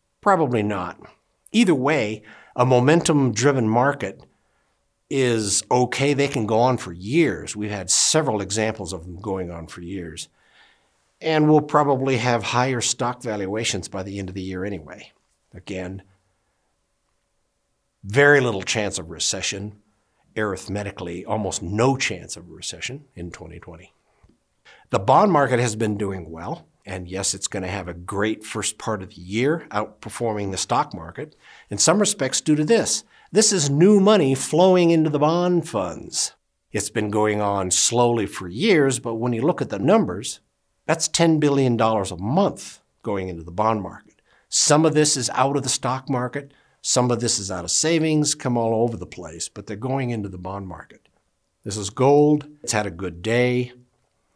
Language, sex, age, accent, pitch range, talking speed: English, male, 60-79, American, 95-140 Hz, 165 wpm